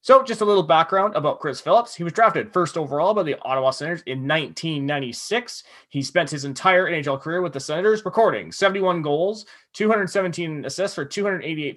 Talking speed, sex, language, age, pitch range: 180 wpm, male, English, 30-49, 140-195 Hz